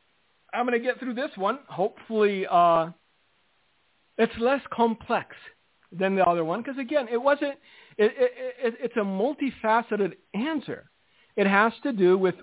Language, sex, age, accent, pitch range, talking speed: English, male, 50-69, American, 180-240 Hz, 155 wpm